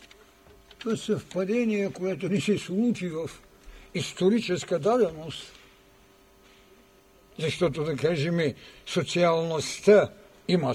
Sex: male